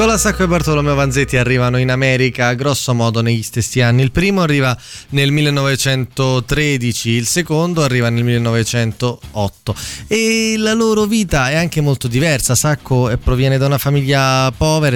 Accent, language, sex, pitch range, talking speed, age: native, Italian, male, 115-160 Hz, 145 wpm, 20-39